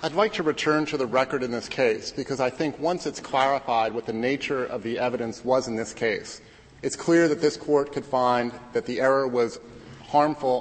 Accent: American